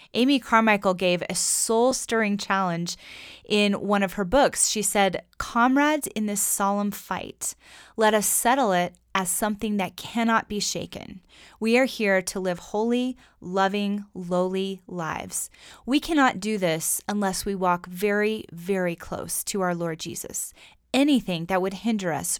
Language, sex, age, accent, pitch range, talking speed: English, female, 20-39, American, 180-225 Hz, 150 wpm